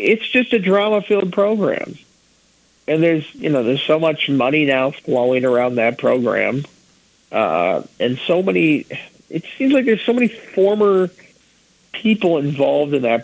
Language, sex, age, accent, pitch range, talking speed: English, male, 50-69, American, 125-180 Hz, 155 wpm